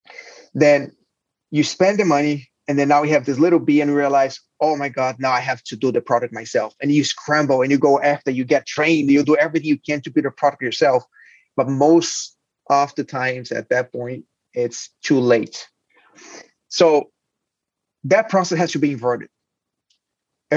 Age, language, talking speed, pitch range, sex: 30-49, English, 195 wpm, 135-160 Hz, male